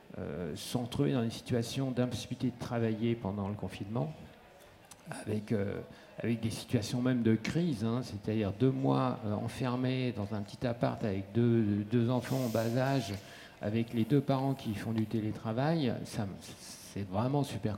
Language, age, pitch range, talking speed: French, 50-69, 105-130 Hz, 165 wpm